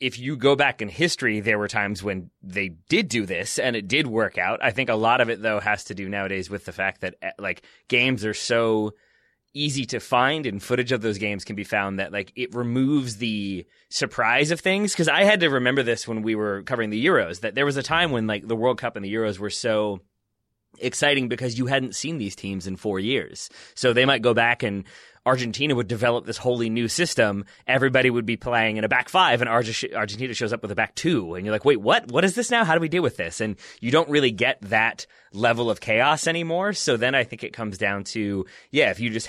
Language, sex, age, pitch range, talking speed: English, male, 30-49, 105-125 Hz, 245 wpm